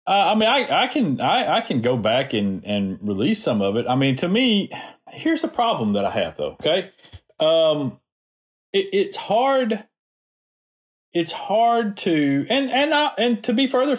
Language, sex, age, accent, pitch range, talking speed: English, male, 40-59, American, 130-210 Hz, 185 wpm